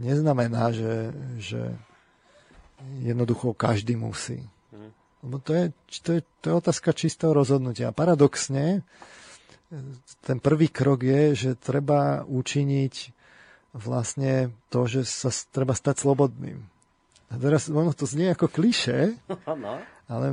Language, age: Slovak, 40-59